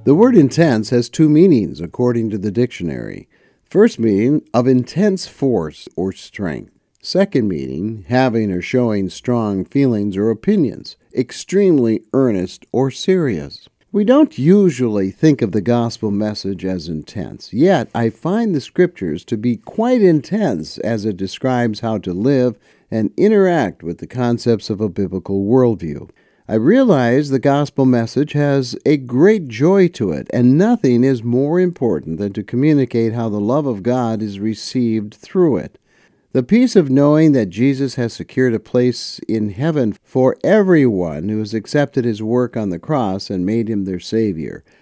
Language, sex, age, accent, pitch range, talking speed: English, male, 60-79, American, 110-150 Hz, 160 wpm